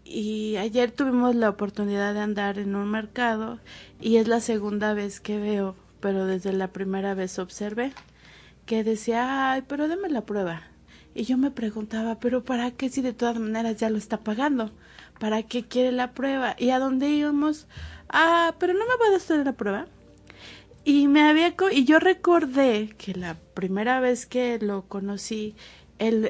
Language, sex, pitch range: Spanish, female, 210-275 Hz